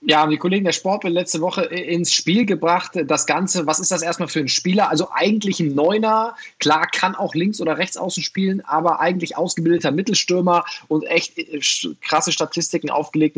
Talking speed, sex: 195 wpm, male